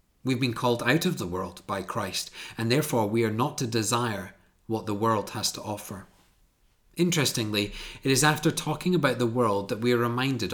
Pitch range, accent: 100-125 Hz, British